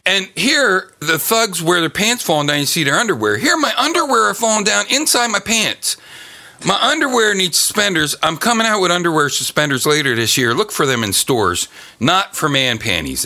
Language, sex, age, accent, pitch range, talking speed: English, male, 40-59, American, 140-215 Hz, 200 wpm